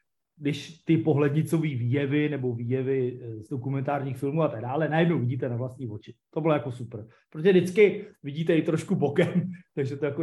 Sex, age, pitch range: male, 30-49, 135-180 Hz